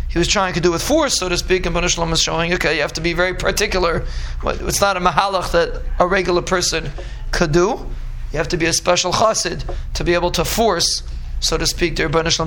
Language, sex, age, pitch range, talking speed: English, male, 20-39, 155-190 Hz, 235 wpm